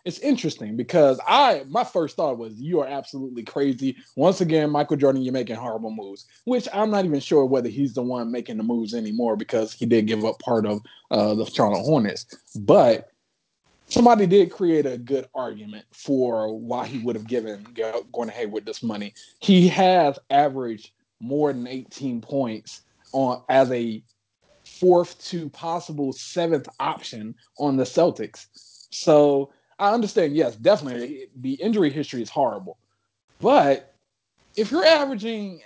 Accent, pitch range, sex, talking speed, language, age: American, 125-180 Hz, male, 160 wpm, English, 20-39